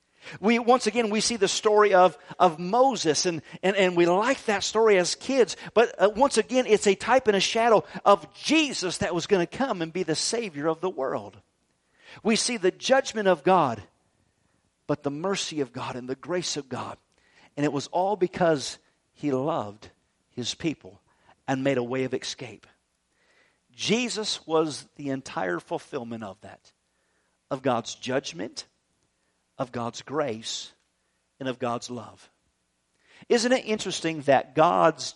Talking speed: 160 wpm